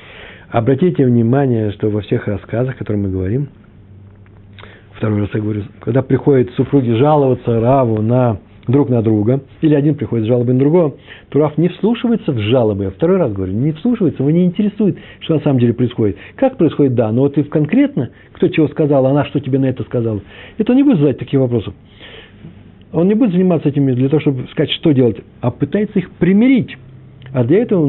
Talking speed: 200 wpm